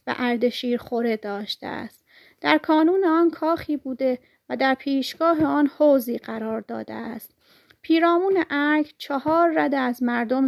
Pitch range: 245-300 Hz